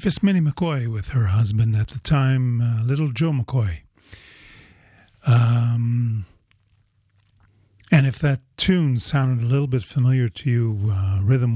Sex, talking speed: male, 135 wpm